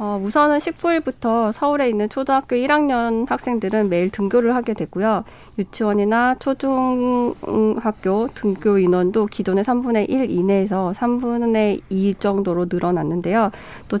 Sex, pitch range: female, 195-250 Hz